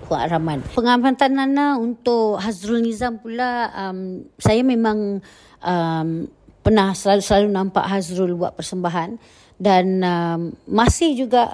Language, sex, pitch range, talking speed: Malay, female, 180-230 Hz, 105 wpm